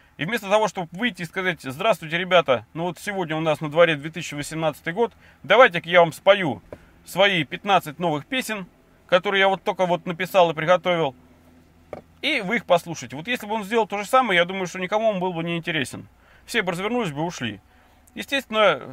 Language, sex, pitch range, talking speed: Russian, male, 150-195 Hz, 195 wpm